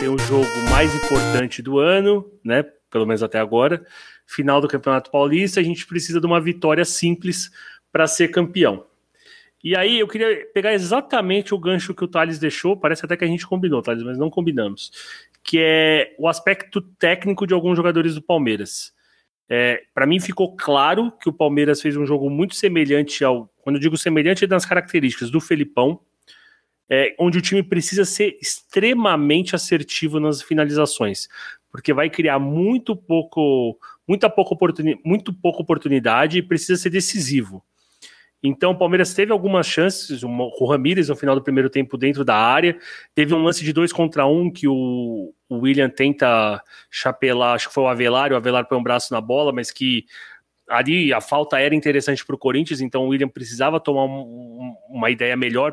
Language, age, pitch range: Portuguese, 30-49, 135-180 Hz